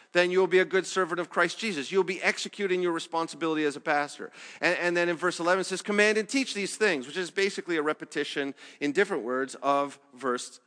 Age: 40-59